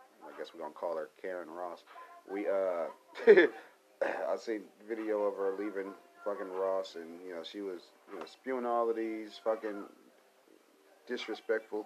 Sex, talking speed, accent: male, 160 wpm, American